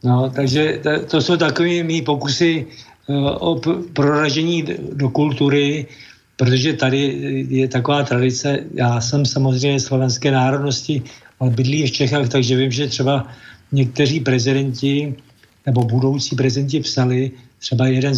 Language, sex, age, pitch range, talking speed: Slovak, male, 60-79, 130-145 Hz, 130 wpm